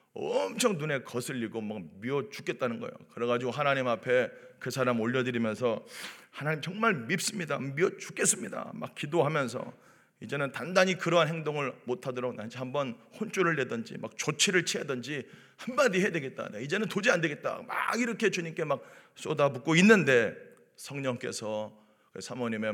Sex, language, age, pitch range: male, Korean, 40-59, 125-185 Hz